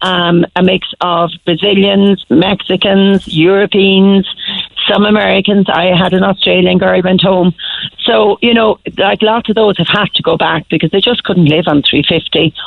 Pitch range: 165-195 Hz